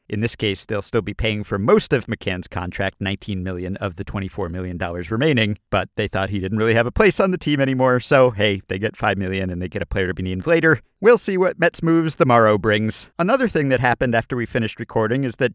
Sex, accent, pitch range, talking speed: male, American, 105-155 Hz, 250 wpm